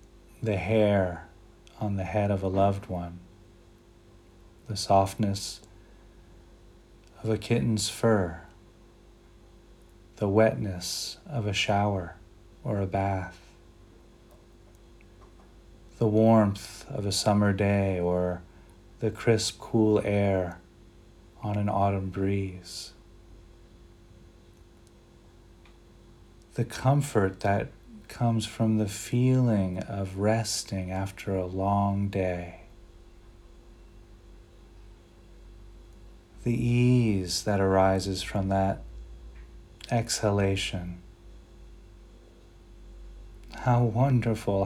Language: English